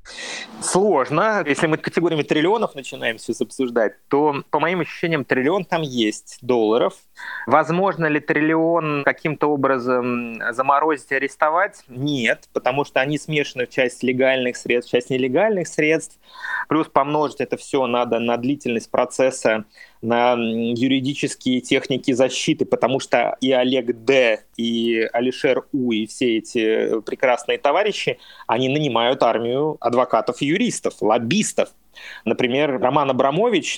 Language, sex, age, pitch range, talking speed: Russian, male, 20-39, 120-150 Hz, 125 wpm